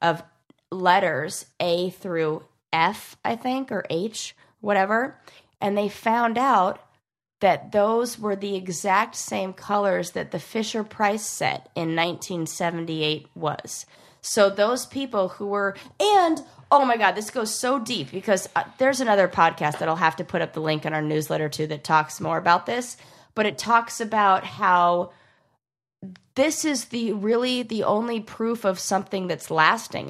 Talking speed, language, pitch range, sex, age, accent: 160 wpm, English, 170-225 Hz, female, 20-39, American